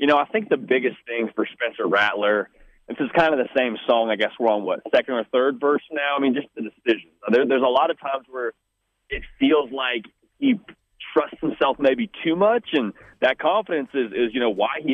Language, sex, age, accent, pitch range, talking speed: English, male, 30-49, American, 115-170 Hz, 225 wpm